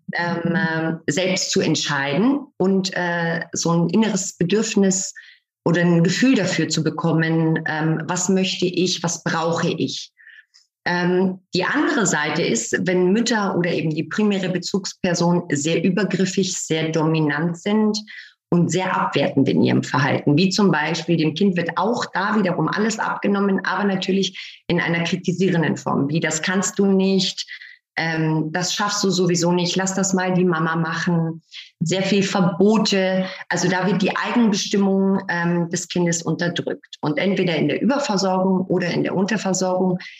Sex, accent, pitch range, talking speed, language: female, German, 170-200 Hz, 150 wpm, German